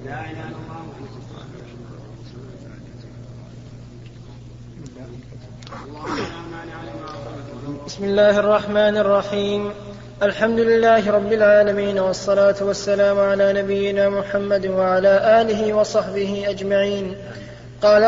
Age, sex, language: 20-39, male, Arabic